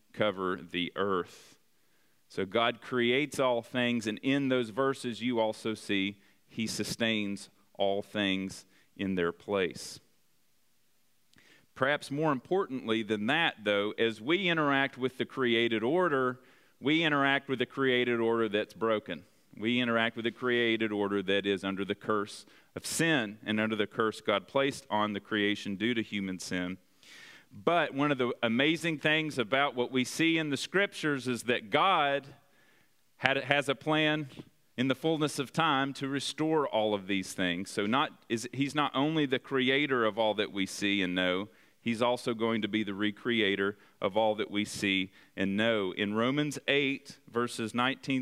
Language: English